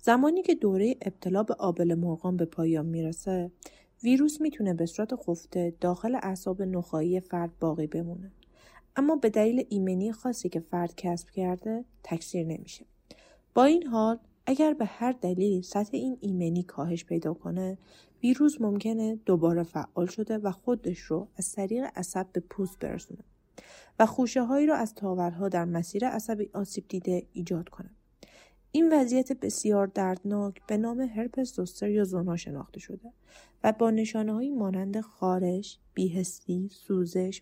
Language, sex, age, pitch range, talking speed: Persian, female, 30-49, 180-235 Hz, 145 wpm